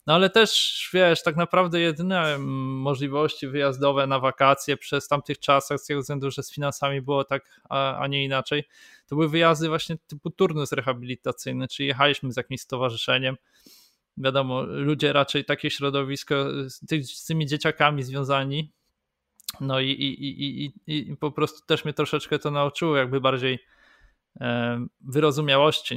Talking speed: 145 wpm